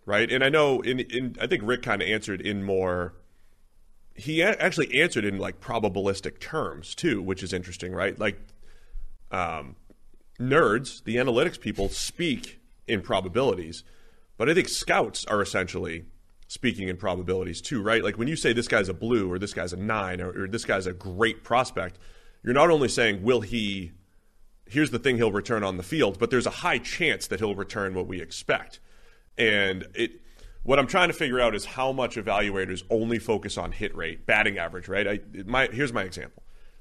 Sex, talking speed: male, 190 wpm